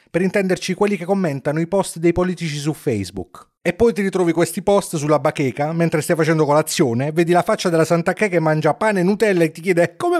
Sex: male